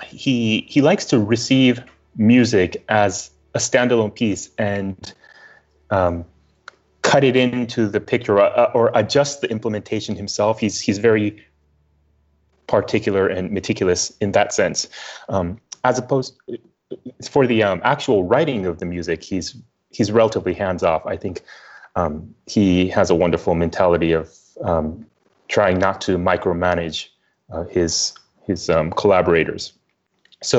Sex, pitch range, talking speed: male, 85-110 Hz, 135 wpm